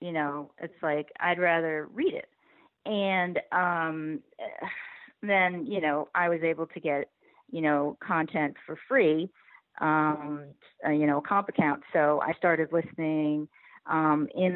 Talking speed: 145 wpm